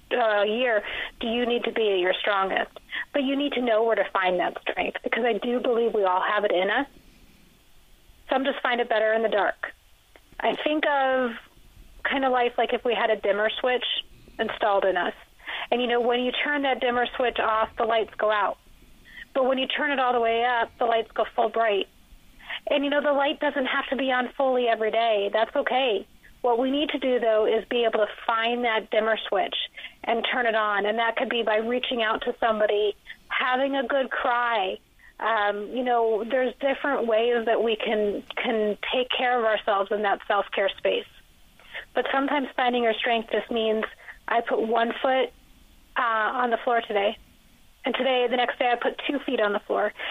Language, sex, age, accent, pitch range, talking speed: English, female, 30-49, American, 220-260 Hz, 205 wpm